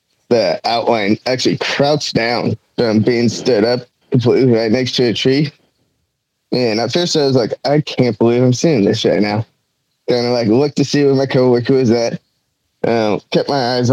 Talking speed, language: 185 wpm, English